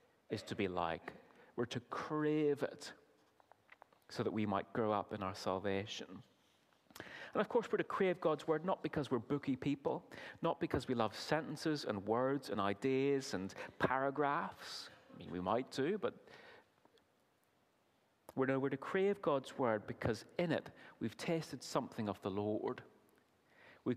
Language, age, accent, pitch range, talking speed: English, 30-49, British, 115-170 Hz, 160 wpm